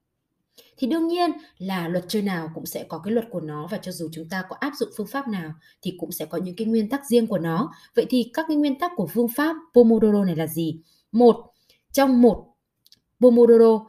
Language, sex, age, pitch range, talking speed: Vietnamese, female, 20-39, 180-250 Hz, 230 wpm